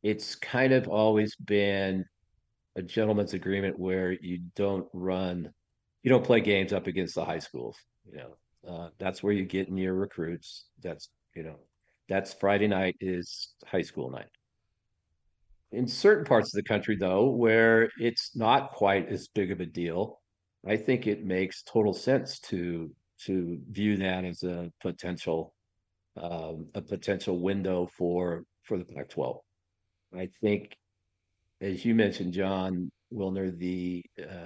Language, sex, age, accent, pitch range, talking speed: English, male, 50-69, American, 90-105 Hz, 150 wpm